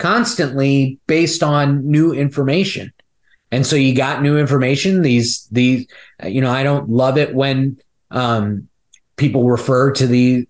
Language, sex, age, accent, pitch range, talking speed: English, male, 30-49, American, 125-145 Hz, 145 wpm